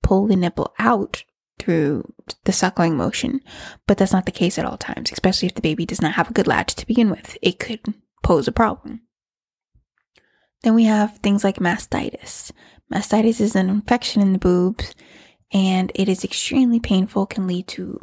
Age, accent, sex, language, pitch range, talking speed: 20-39, American, female, English, 180-215 Hz, 185 wpm